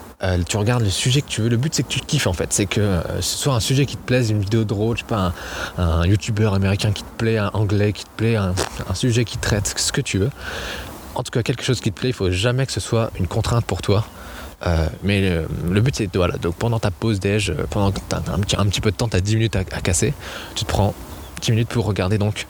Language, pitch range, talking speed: French, 90-115 Hz, 290 wpm